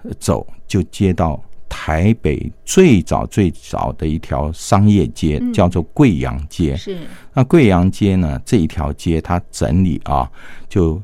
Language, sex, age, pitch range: Chinese, male, 50-69, 80-105 Hz